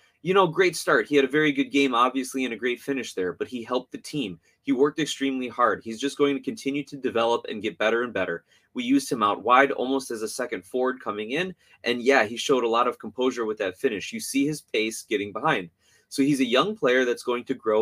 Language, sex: English, male